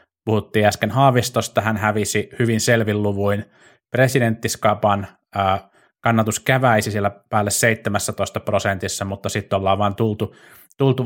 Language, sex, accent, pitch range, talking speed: Finnish, male, native, 100-120 Hz, 120 wpm